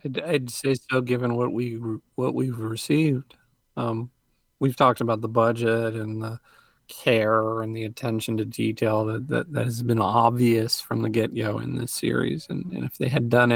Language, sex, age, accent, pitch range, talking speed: English, male, 40-59, American, 110-130 Hz, 190 wpm